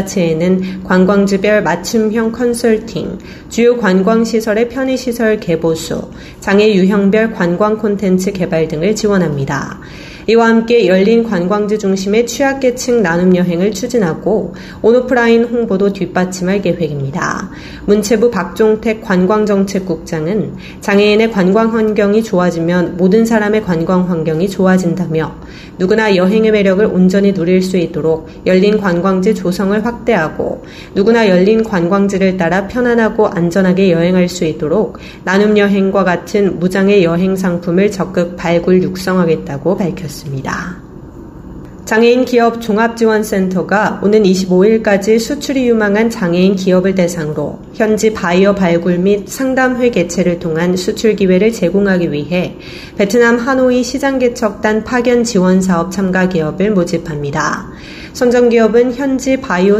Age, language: 30-49, Korean